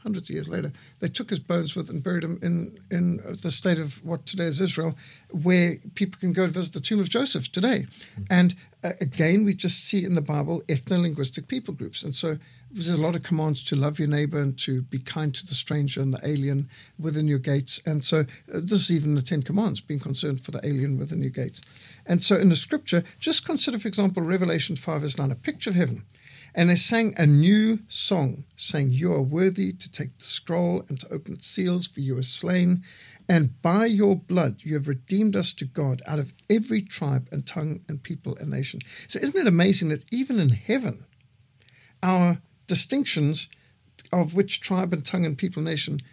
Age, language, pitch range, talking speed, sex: 60-79, English, 140-185 Hz, 210 wpm, male